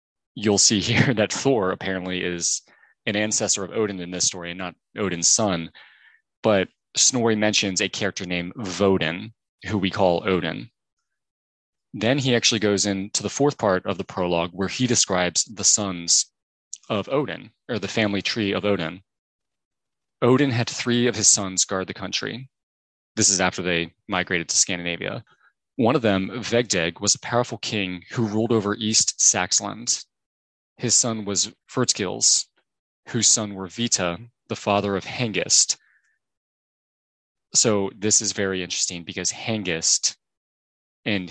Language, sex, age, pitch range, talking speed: English, male, 20-39, 90-110 Hz, 150 wpm